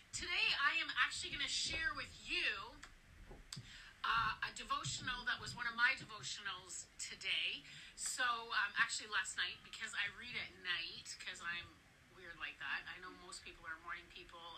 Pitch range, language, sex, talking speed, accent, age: 225-295 Hz, English, female, 170 wpm, American, 30-49